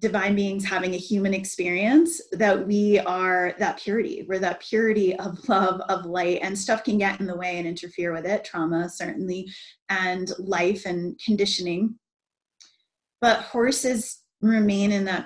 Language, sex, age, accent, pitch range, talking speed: English, female, 20-39, American, 180-215 Hz, 150 wpm